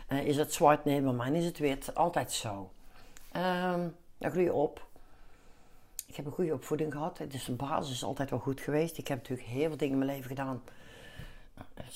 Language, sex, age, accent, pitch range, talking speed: Dutch, female, 60-79, Dutch, 135-165 Hz, 210 wpm